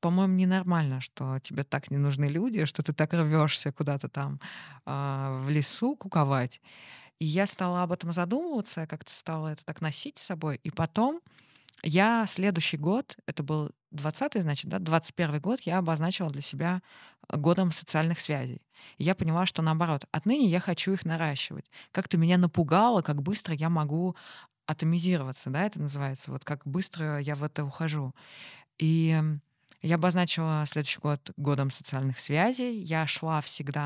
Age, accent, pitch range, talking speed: 20-39, native, 145-180 Hz, 160 wpm